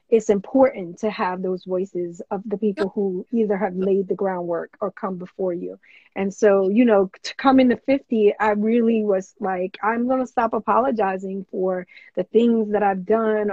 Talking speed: 180 wpm